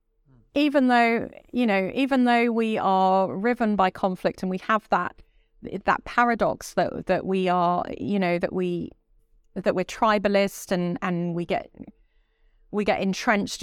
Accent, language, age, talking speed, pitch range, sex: British, English, 30-49, 155 wpm, 175-220 Hz, female